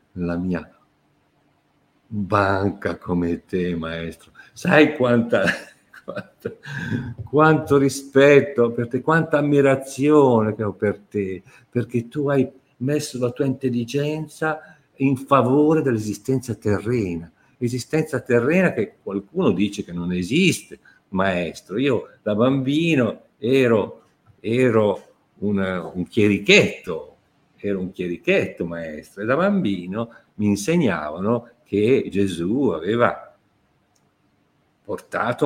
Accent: native